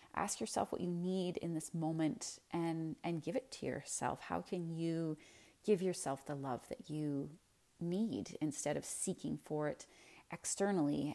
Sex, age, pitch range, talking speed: female, 30-49, 150-185 Hz, 160 wpm